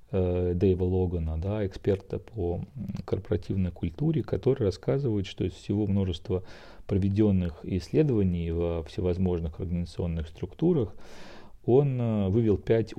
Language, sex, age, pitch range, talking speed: Russian, male, 40-59, 85-100 Hz, 90 wpm